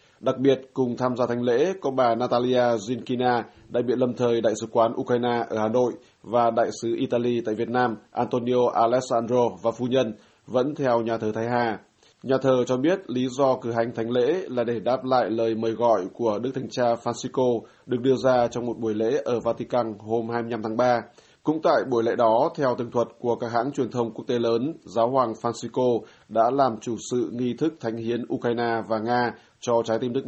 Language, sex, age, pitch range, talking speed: Vietnamese, male, 20-39, 115-125 Hz, 215 wpm